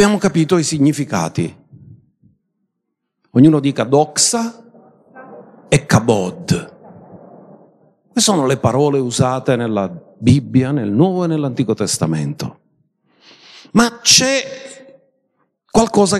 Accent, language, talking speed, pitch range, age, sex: native, Italian, 90 wpm, 145-220 Hz, 50-69, male